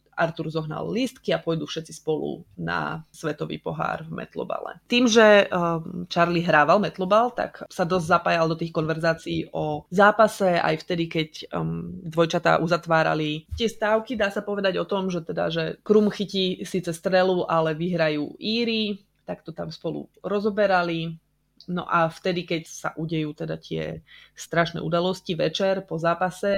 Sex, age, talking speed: female, 20-39, 155 wpm